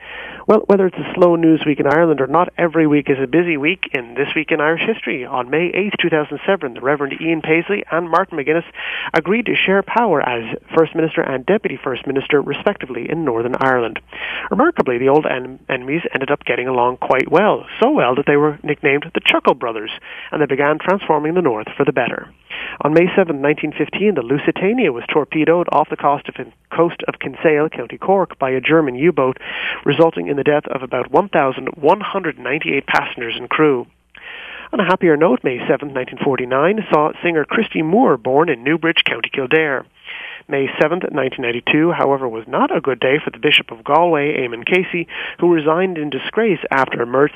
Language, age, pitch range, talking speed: English, 30-49, 135-170 Hz, 185 wpm